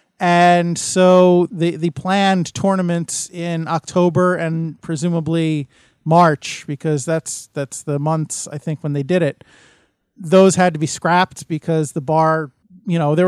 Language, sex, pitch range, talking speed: English, male, 160-190 Hz, 150 wpm